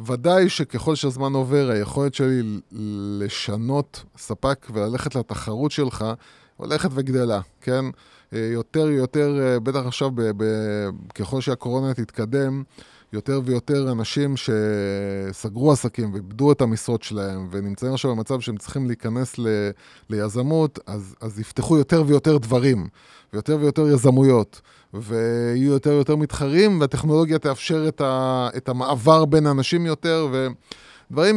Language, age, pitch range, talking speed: Hebrew, 20-39, 110-145 Hz, 120 wpm